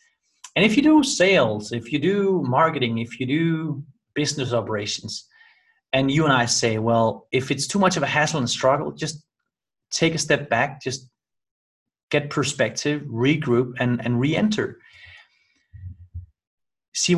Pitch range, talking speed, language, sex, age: 125-180 Hz, 150 wpm, English, male, 30-49